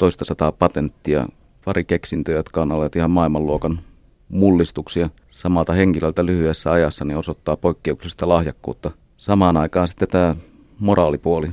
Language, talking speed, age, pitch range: Finnish, 115 wpm, 30-49, 75-90 Hz